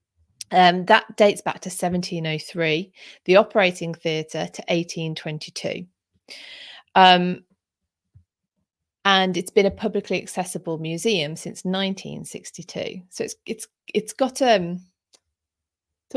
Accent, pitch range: British, 150-195 Hz